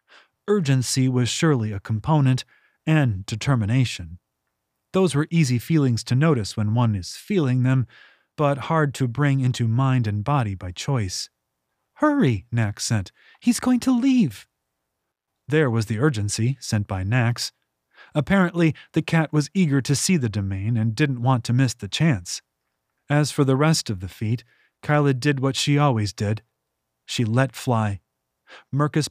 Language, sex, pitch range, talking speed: English, male, 105-145 Hz, 155 wpm